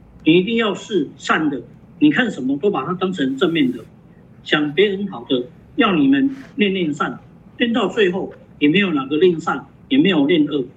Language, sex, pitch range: Chinese, male, 165-230 Hz